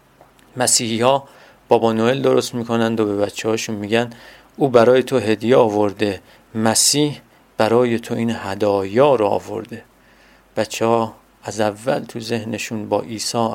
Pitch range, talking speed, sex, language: 105-120 Hz, 135 wpm, male, Persian